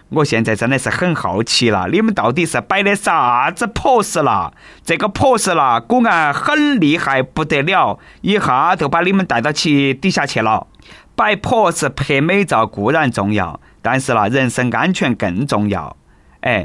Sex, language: male, Chinese